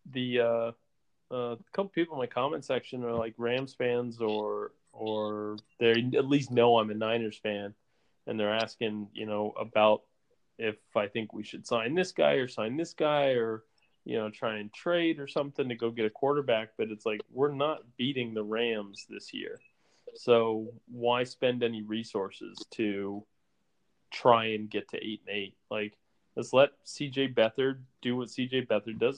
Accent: American